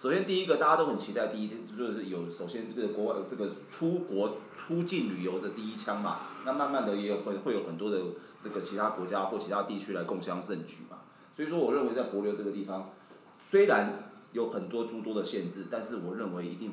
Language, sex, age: Chinese, male, 30-49